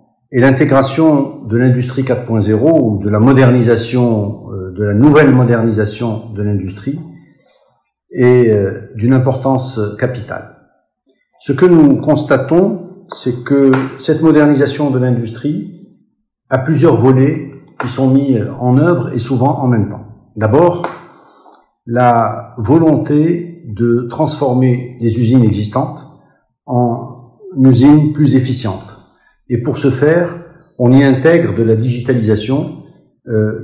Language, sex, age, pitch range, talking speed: Arabic, male, 50-69, 115-145 Hz, 115 wpm